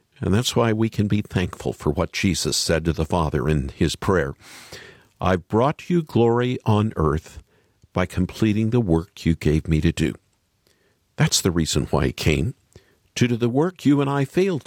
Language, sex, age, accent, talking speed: English, male, 50-69, American, 190 wpm